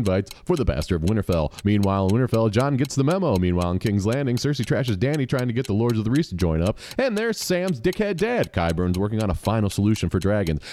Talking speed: 245 wpm